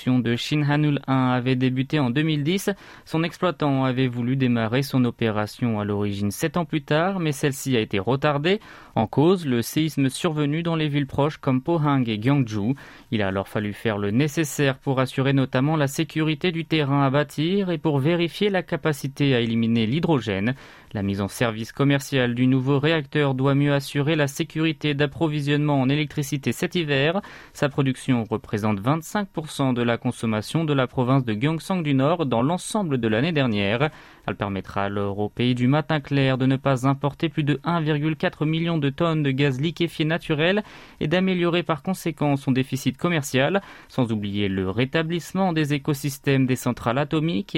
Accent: French